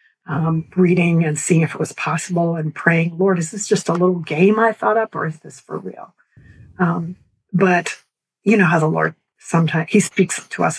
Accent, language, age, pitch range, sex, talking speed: American, English, 50-69, 160-190 Hz, female, 205 wpm